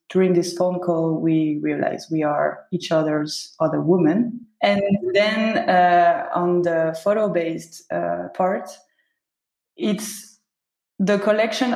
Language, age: English, 20-39